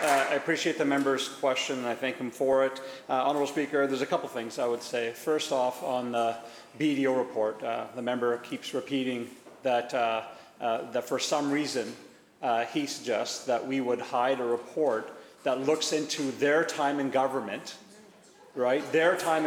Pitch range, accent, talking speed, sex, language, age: 125-155 Hz, American, 180 wpm, male, English, 40-59